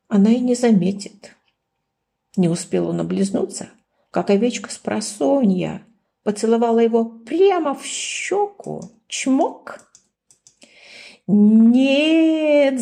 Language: Ukrainian